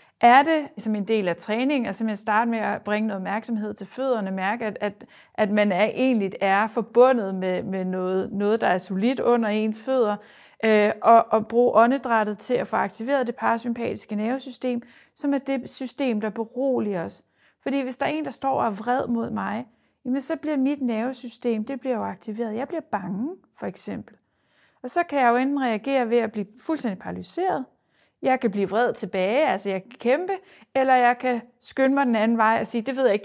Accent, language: native, Danish